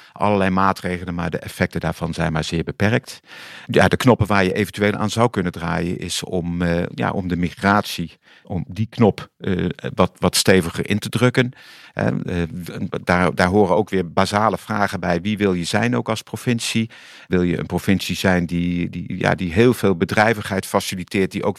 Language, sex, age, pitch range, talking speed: Dutch, male, 50-69, 90-105 Hz, 180 wpm